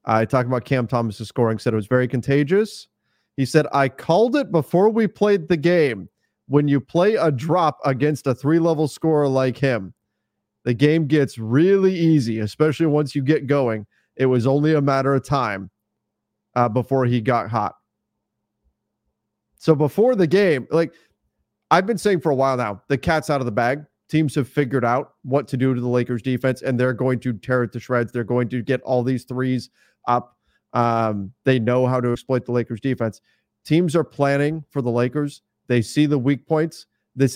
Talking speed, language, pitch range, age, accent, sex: 195 wpm, English, 120-150 Hz, 30-49, American, male